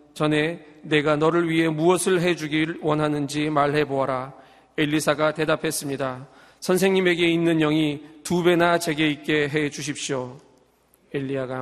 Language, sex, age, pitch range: Korean, male, 40-59, 135-155 Hz